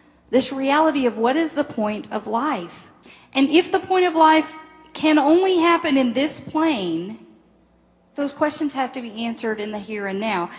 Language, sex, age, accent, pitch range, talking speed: English, female, 40-59, American, 230-300 Hz, 180 wpm